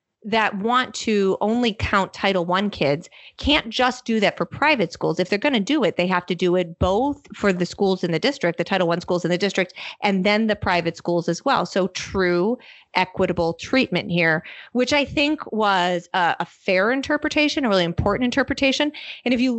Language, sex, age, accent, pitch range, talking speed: English, female, 30-49, American, 175-225 Hz, 205 wpm